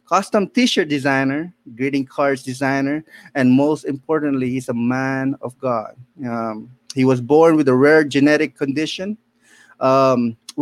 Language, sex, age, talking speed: English, male, 20-39, 135 wpm